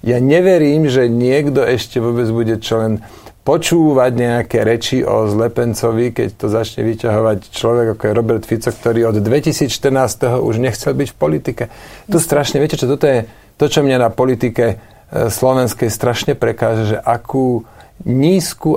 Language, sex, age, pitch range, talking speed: Slovak, male, 40-59, 115-140 Hz, 155 wpm